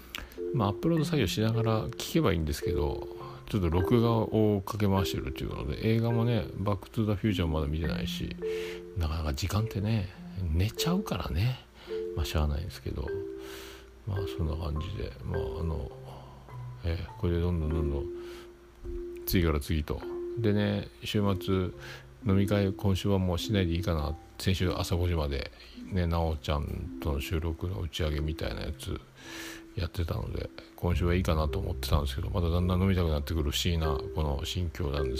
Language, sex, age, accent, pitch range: Japanese, male, 50-69, native, 80-100 Hz